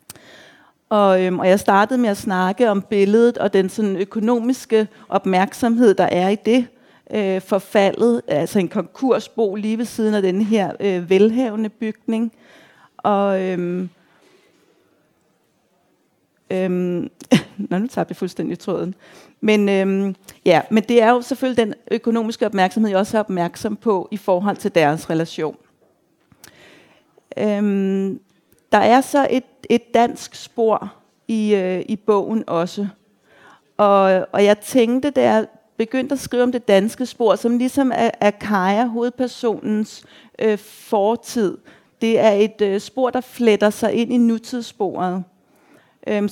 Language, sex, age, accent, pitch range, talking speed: Danish, female, 30-49, native, 195-235 Hz, 140 wpm